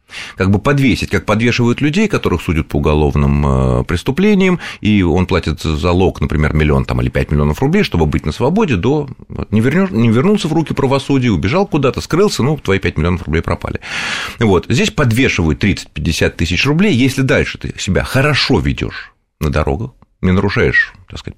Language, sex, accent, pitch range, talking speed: Russian, male, native, 80-130 Hz, 175 wpm